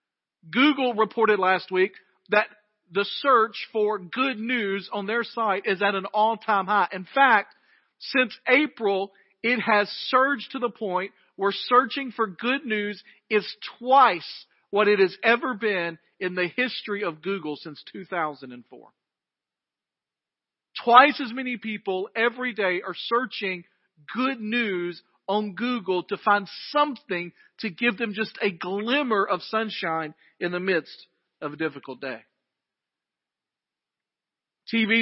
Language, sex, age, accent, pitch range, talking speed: English, male, 40-59, American, 190-235 Hz, 135 wpm